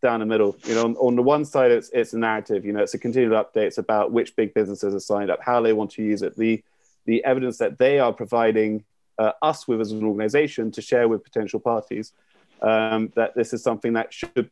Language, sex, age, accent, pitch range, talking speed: English, male, 30-49, British, 105-120 Hz, 245 wpm